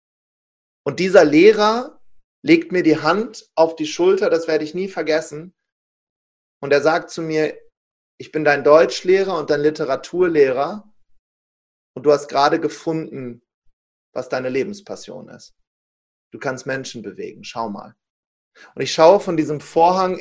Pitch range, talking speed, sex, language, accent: 150-200 Hz, 145 wpm, male, German, German